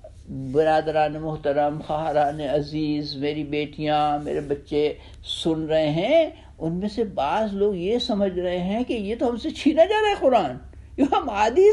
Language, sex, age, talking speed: Urdu, male, 60-79, 175 wpm